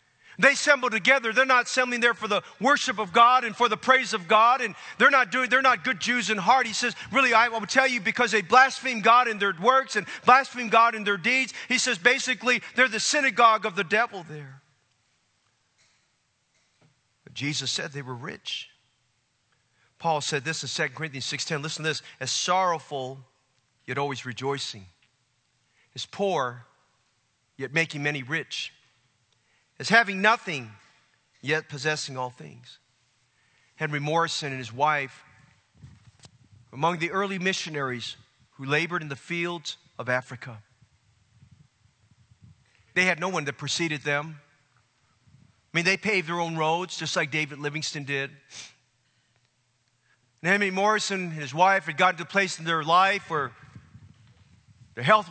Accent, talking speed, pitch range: American, 155 wpm, 125-210 Hz